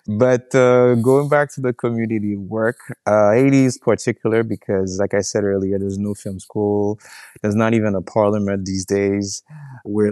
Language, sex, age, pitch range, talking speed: English, male, 20-39, 100-115 Hz, 170 wpm